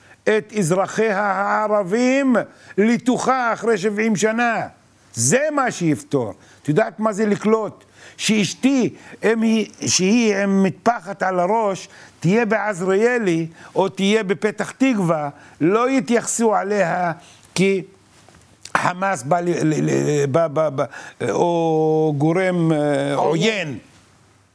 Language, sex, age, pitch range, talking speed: Hebrew, male, 60-79, 140-220 Hz, 105 wpm